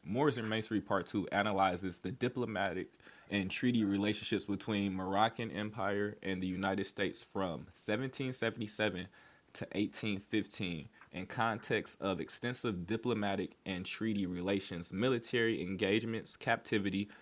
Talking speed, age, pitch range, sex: 110 wpm, 20-39, 95-115 Hz, male